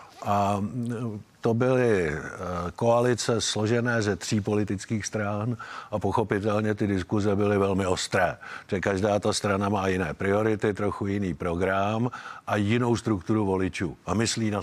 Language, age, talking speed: Czech, 50-69, 135 wpm